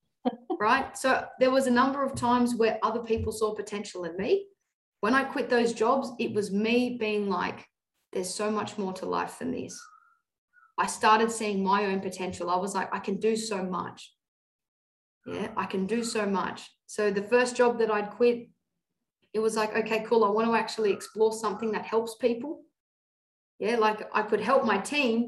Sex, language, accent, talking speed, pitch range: female, English, Australian, 190 wpm, 200-245 Hz